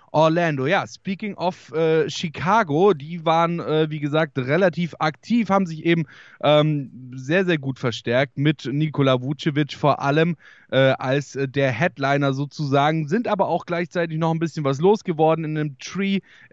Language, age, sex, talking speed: German, 10-29, male, 160 wpm